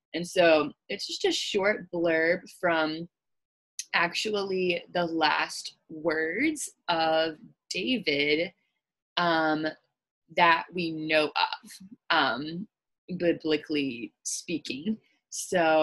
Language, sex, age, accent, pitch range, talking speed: English, female, 20-39, American, 165-215 Hz, 85 wpm